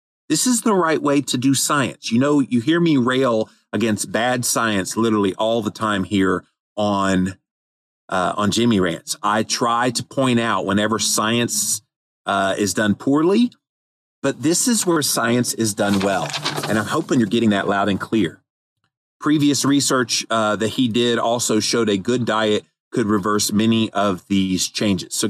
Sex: male